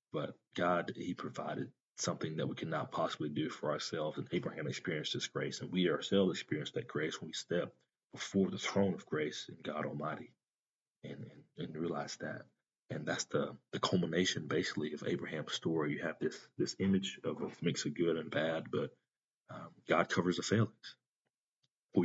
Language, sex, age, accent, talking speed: English, male, 30-49, American, 180 wpm